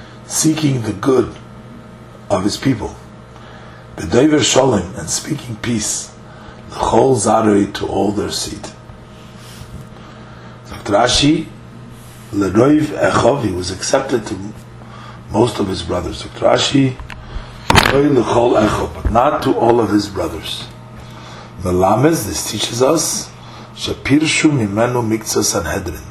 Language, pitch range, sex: English, 105-125 Hz, male